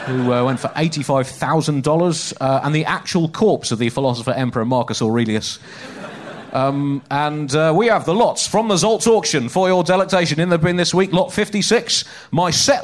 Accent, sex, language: British, male, English